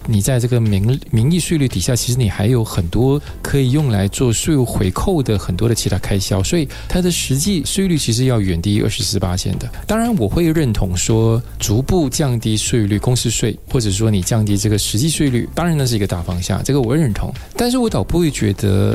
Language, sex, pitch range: Chinese, male, 100-135 Hz